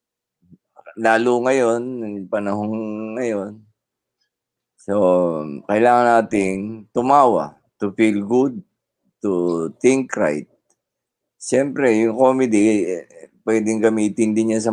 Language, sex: Filipino, male